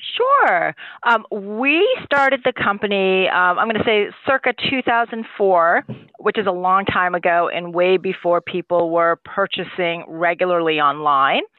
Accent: American